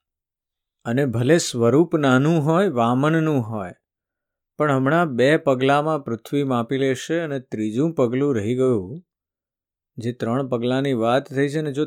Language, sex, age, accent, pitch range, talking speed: Gujarati, male, 50-69, native, 115-155 Hz, 100 wpm